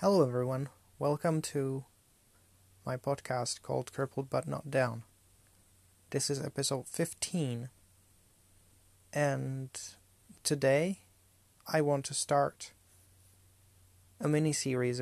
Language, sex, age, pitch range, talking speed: English, male, 30-49, 95-140 Hz, 95 wpm